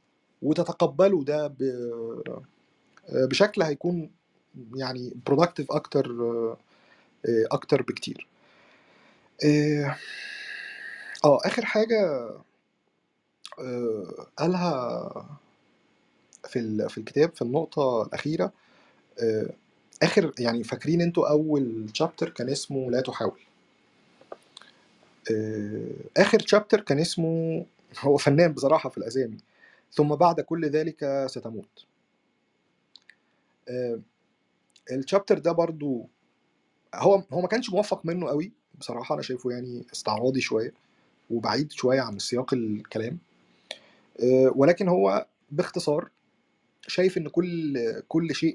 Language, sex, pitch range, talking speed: Arabic, male, 120-165 Hz, 90 wpm